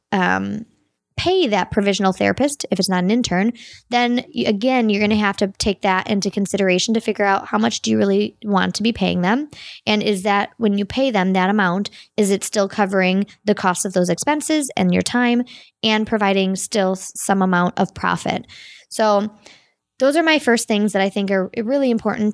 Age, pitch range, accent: 20-39, 195-240 Hz, American